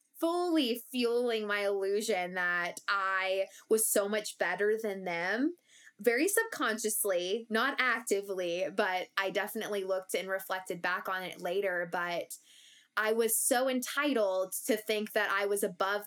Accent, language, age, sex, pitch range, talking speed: American, English, 20-39, female, 195-240 Hz, 140 wpm